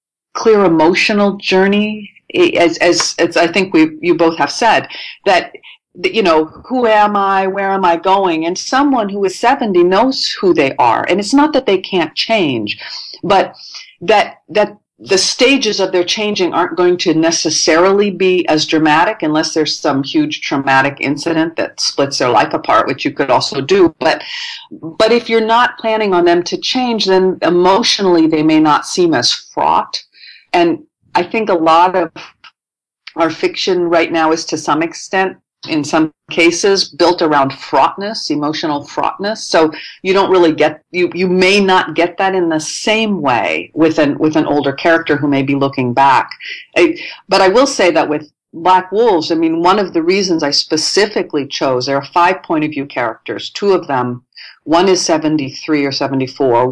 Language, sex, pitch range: English, female, 160-215 Hz